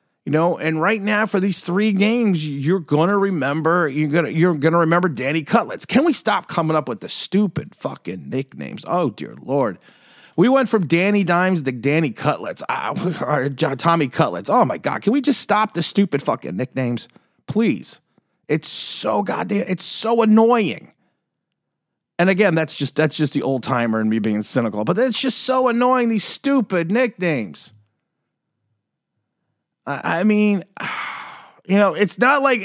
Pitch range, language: 140-205 Hz, English